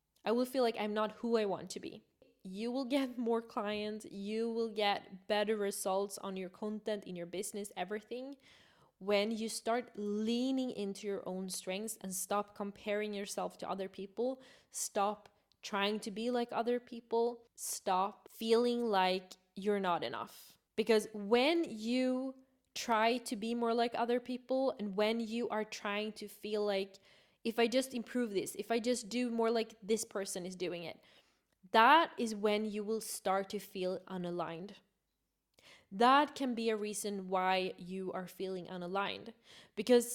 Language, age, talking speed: English, 20-39, 165 wpm